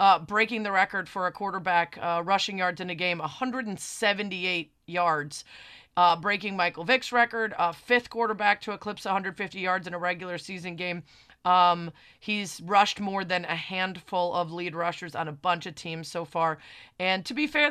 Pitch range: 175-235 Hz